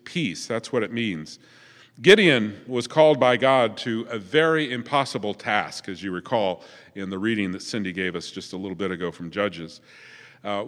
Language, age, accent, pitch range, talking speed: English, 50-69, American, 110-145 Hz, 185 wpm